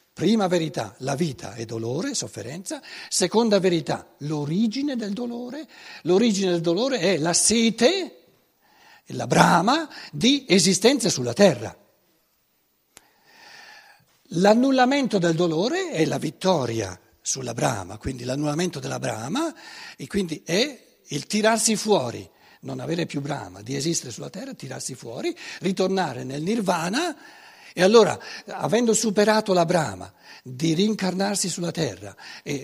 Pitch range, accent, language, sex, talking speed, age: 145-235 Hz, native, Italian, male, 120 wpm, 60-79